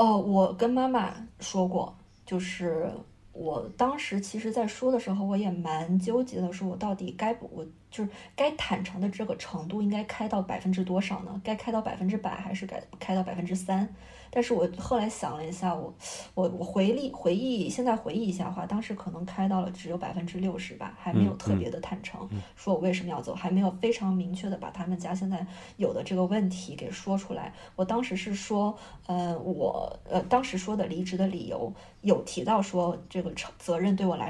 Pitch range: 180-205 Hz